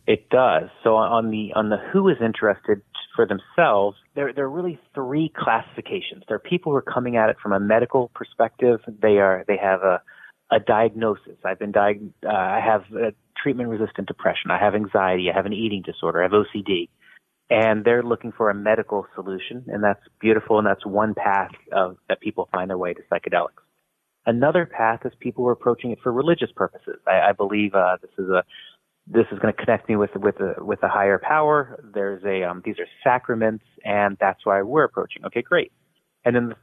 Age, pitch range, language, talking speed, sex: 30-49, 100-120 Hz, English, 210 wpm, male